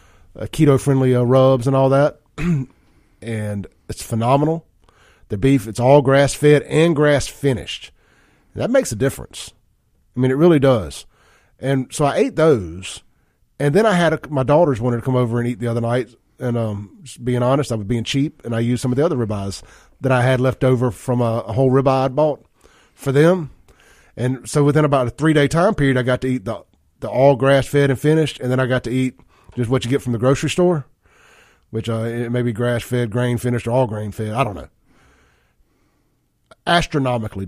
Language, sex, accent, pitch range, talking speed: English, male, American, 115-140 Hz, 200 wpm